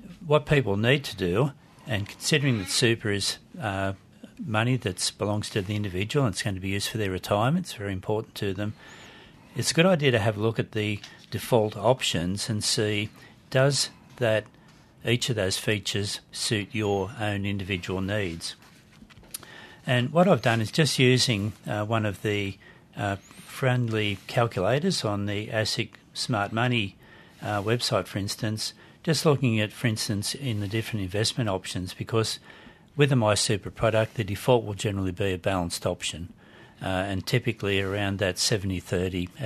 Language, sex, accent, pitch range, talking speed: English, male, Australian, 100-120 Hz, 165 wpm